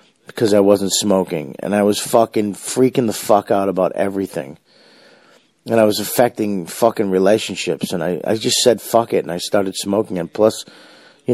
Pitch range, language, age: 95-115 Hz, English, 40-59